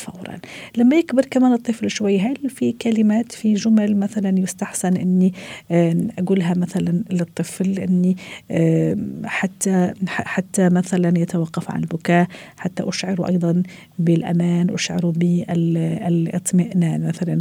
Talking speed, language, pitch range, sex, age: 105 wpm, Arabic, 170-215 Hz, female, 50-69